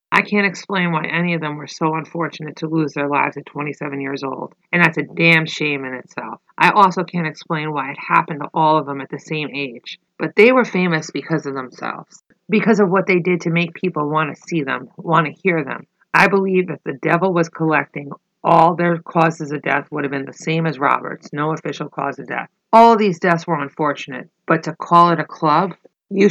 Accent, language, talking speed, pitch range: American, English, 230 wpm, 145-185 Hz